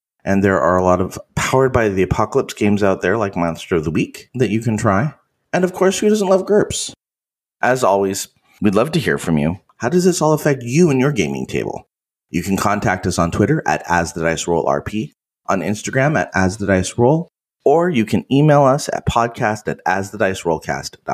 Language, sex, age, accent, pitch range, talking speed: English, male, 30-49, American, 90-130 Hz, 200 wpm